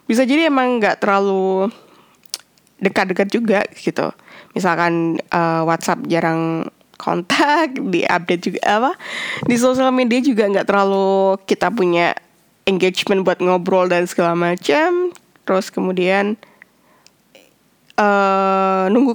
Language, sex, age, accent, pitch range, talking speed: Indonesian, female, 20-39, native, 175-225 Hz, 105 wpm